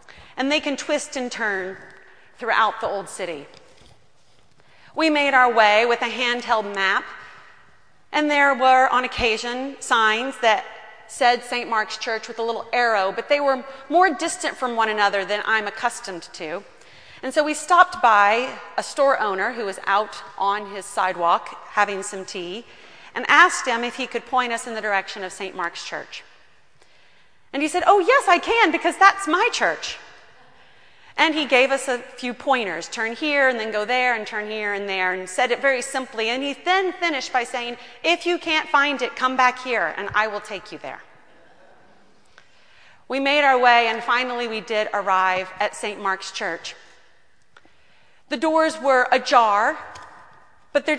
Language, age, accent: English, 30-49, American